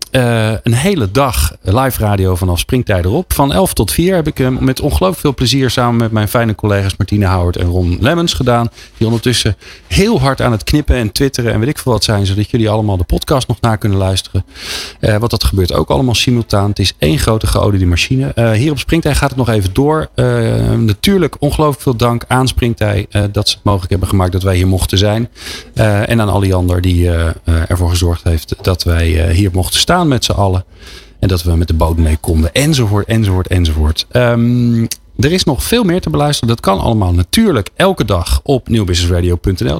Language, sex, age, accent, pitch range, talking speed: Dutch, male, 40-59, Dutch, 90-120 Hz, 215 wpm